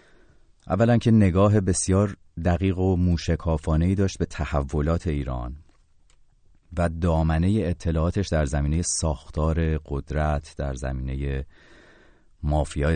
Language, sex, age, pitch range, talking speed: Persian, male, 30-49, 70-85 Hz, 95 wpm